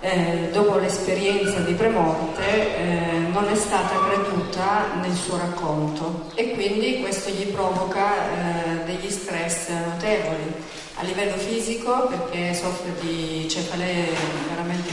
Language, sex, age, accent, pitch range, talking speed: French, female, 40-59, Italian, 170-205 Hz, 120 wpm